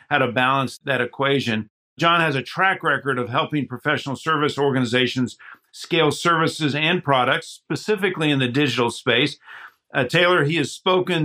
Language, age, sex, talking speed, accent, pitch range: English, 50-69, male, 155 wpm, American, 135-160 Hz